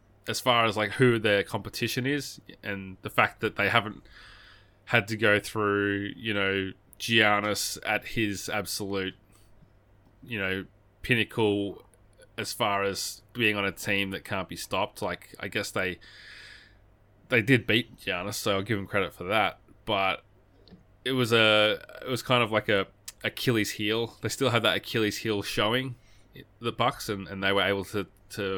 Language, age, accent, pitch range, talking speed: English, 20-39, Australian, 95-115 Hz, 170 wpm